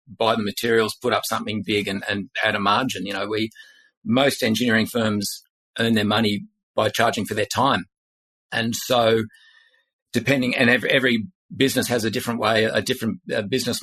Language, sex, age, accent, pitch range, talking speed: English, male, 40-59, Australian, 110-140 Hz, 170 wpm